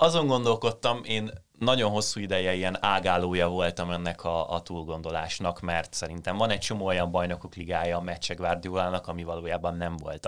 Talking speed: 160 wpm